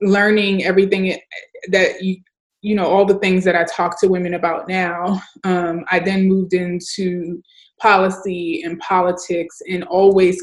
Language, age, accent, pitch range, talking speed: English, 20-39, American, 175-200 Hz, 150 wpm